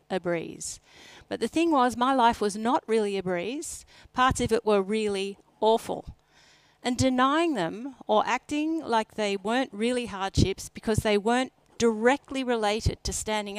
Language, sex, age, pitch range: English, female, 50-69, 205-255 Hz